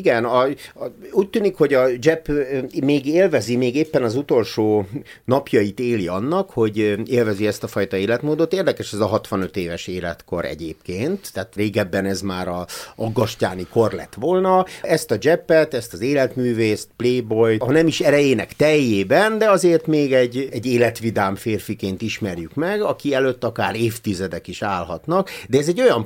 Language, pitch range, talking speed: Hungarian, 100-135 Hz, 160 wpm